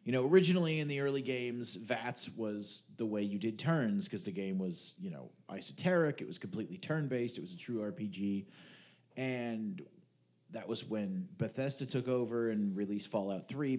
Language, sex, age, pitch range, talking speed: English, male, 30-49, 110-160 Hz, 180 wpm